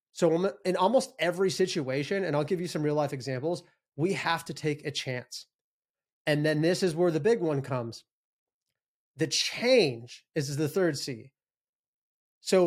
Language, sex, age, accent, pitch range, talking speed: English, male, 30-49, American, 140-175 Hz, 165 wpm